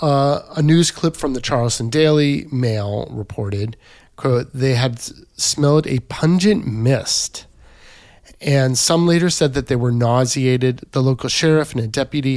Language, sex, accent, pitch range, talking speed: English, male, American, 110-140 Hz, 150 wpm